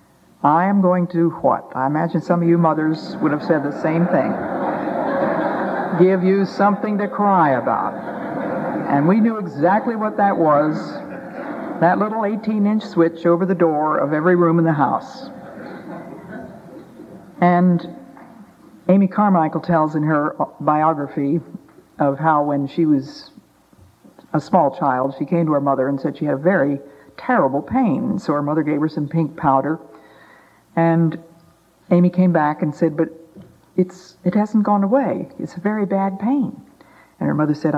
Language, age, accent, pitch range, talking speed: English, 60-79, American, 145-190 Hz, 155 wpm